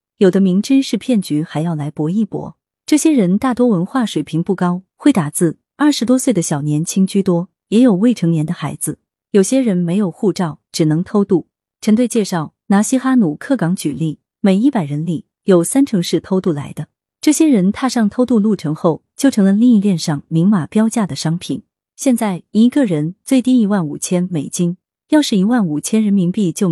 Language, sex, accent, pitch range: Chinese, female, native, 160-230 Hz